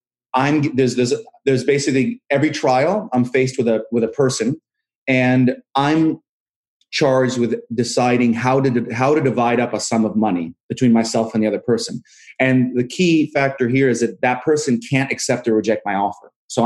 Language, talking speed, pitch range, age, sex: English, 185 wpm, 115-135 Hz, 30-49, male